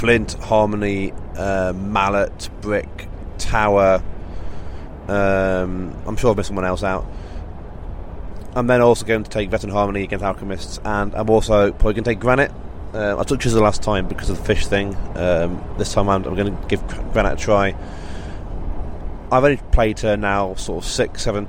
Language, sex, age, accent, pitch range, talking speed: English, male, 20-39, British, 90-105 Hz, 175 wpm